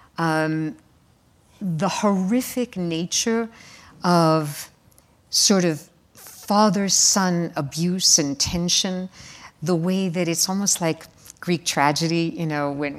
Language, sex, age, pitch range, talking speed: English, female, 60-79, 150-190 Hz, 100 wpm